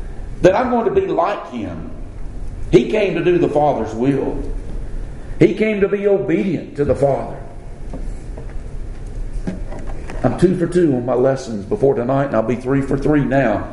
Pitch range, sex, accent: 115-175 Hz, male, American